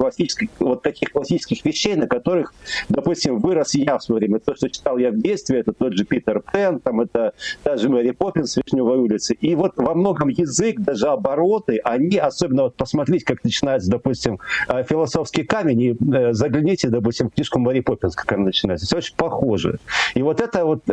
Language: Russian